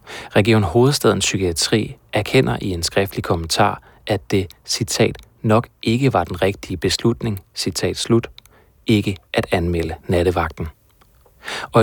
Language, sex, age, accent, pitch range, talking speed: Danish, male, 30-49, native, 90-115 Hz, 120 wpm